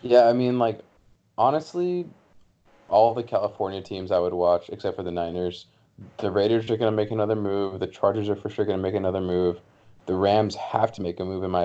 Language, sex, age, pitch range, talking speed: English, male, 20-39, 90-115 Hz, 220 wpm